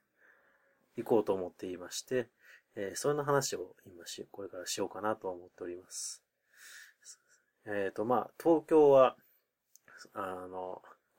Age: 30-49